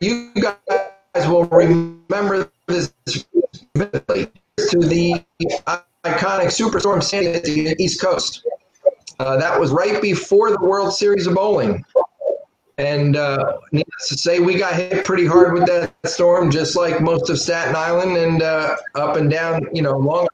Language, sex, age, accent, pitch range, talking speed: English, male, 40-59, American, 160-200 Hz, 155 wpm